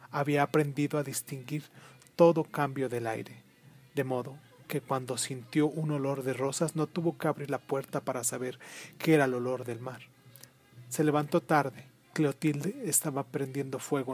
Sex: male